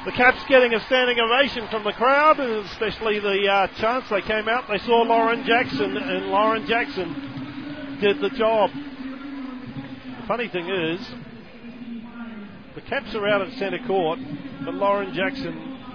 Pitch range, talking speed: 170-235 Hz, 150 wpm